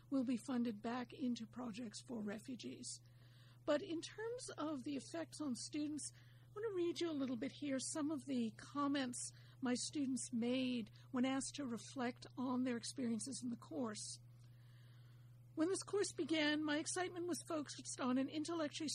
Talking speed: 165 wpm